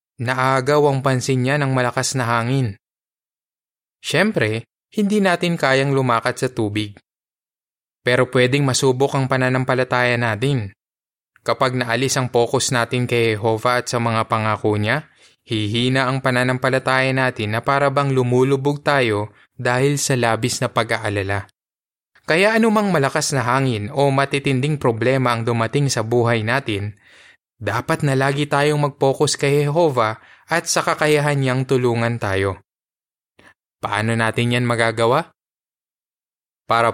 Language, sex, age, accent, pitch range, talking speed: Filipino, male, 20-39, native, 110-135 Hz, 125 wpm